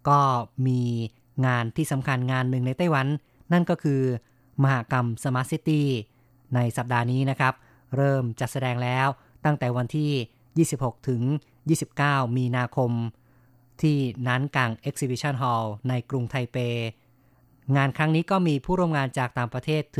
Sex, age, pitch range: female, 20-39, 125-140 Hz